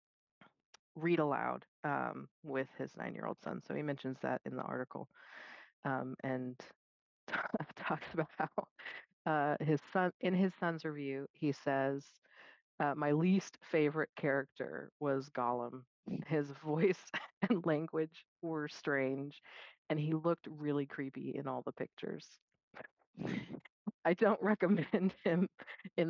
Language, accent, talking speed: English, American, 125 wpm